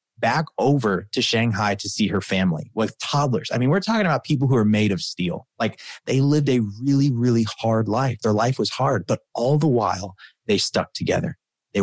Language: English